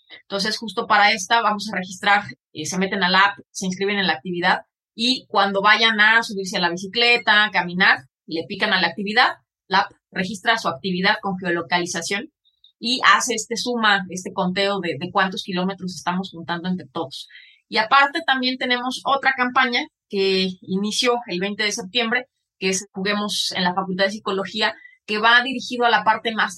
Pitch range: 185-225 Hz